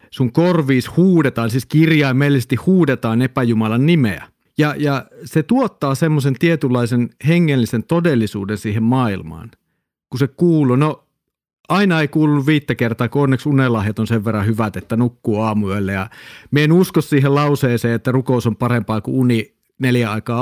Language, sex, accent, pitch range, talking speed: Finnish, male, native, 115-150 Hz, 145 wpm